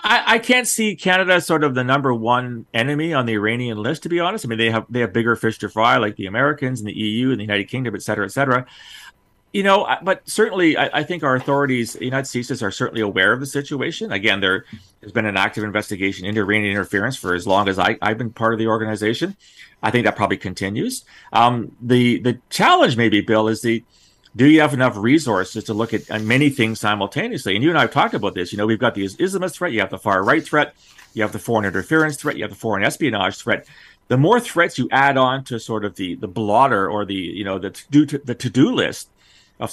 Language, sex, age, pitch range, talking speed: English, male, 40-59, 105-135 Hz, 240 wpm